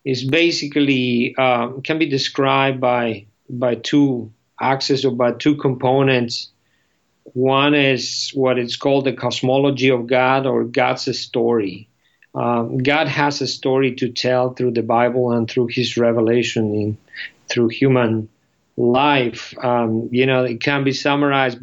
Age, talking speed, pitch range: 50-69, 140 wpm, 115-135 Hz